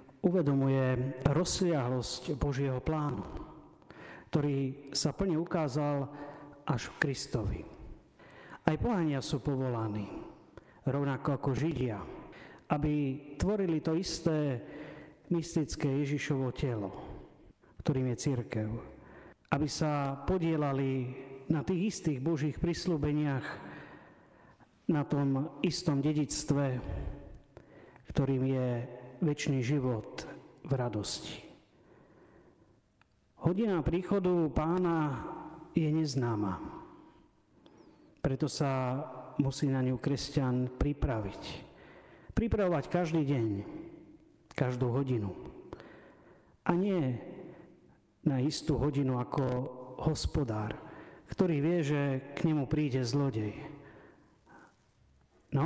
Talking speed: 85 wpm